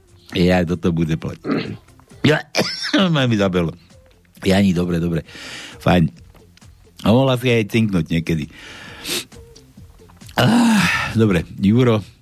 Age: 60-79